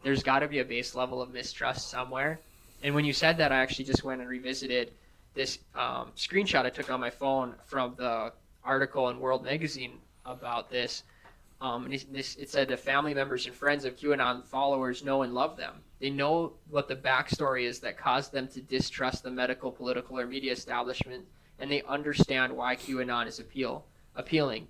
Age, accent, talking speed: 20-39, American, 185 wpm